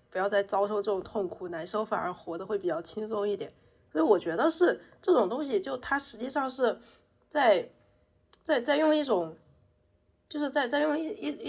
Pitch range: 180-260 Hz